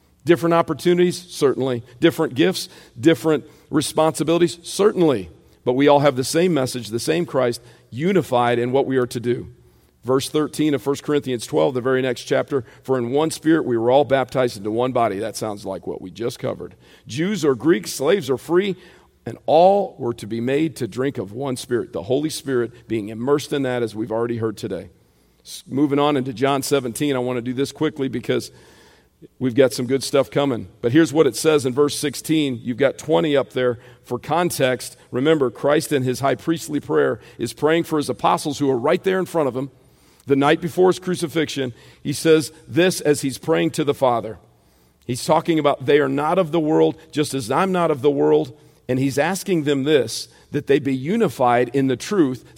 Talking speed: 200 wpm